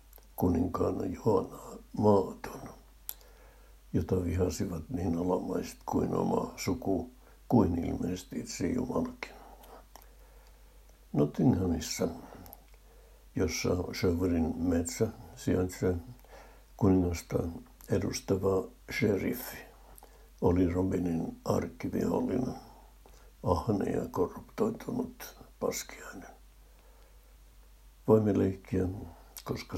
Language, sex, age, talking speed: Finnish, male, 60-79, 60 wpm